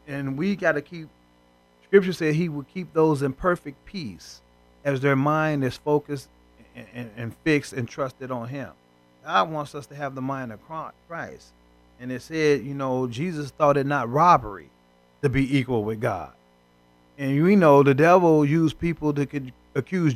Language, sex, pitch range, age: English, male, 110-160 Hz, 30-49